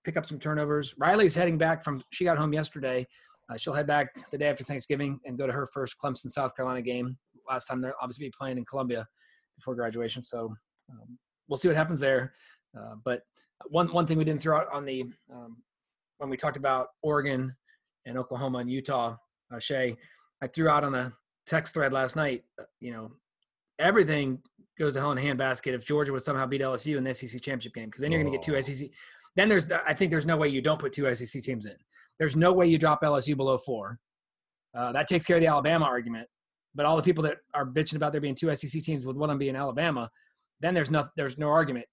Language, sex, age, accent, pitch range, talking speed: English, male, 30-49, American, 130-155 Hz, 235 wpm